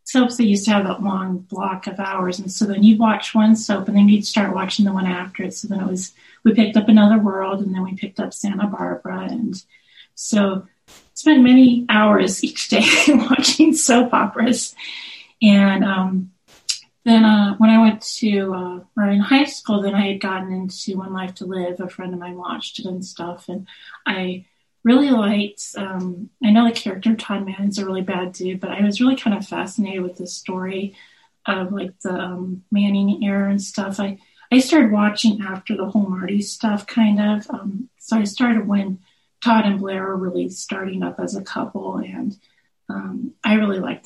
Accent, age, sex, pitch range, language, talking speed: American, 30-49, female, 190-220 Hz, English, 200 wpm